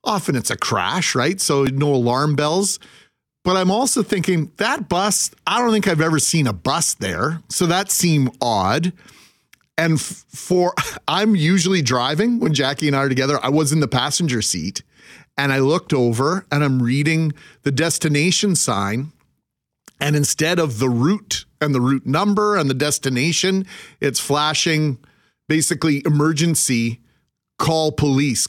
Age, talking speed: 40-59, 155 wpm